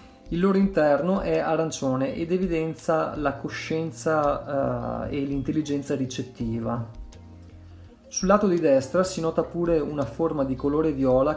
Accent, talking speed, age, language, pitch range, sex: native, 125 wpm, 30-49, Italian, 115-155 Hz, male